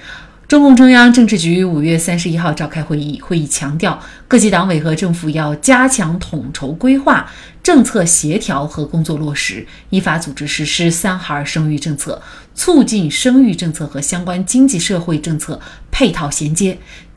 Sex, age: female, 30-49